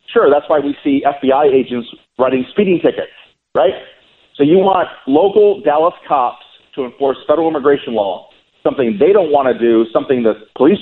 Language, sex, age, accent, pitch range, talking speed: English, male, 40-59, American, 130-210 Hz, 170 wpm